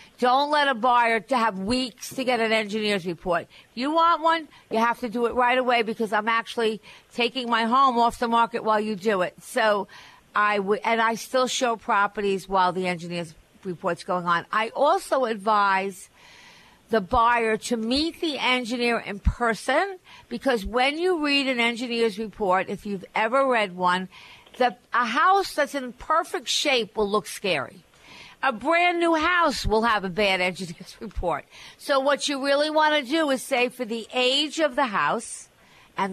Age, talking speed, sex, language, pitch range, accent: 50-69, 180 wpm, female, English, 215-275 Hz, American